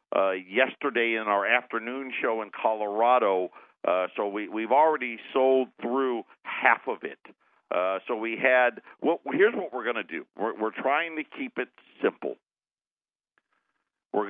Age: 50-69